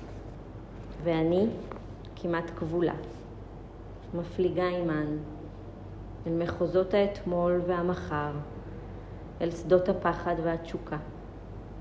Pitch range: 115-180 Hz